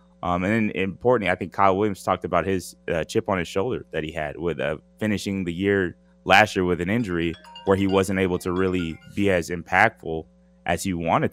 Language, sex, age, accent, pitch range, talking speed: English, male, 20-39, American, 85-100 Hz, 215 wpm